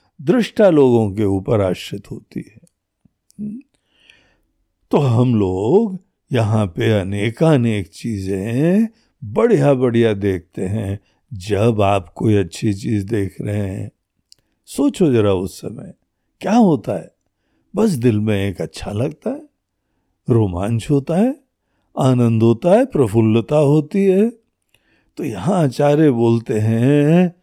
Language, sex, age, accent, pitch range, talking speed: Hindi, male, 60-79, native, 105-150 Hz, 120 wpm